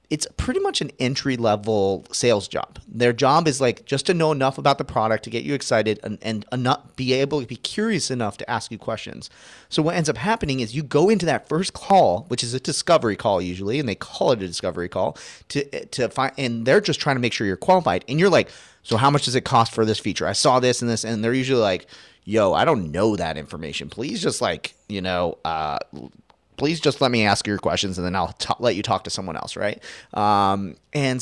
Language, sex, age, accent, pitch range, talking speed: English, male, 30-49, American, 105-140 Hz, 245 wpm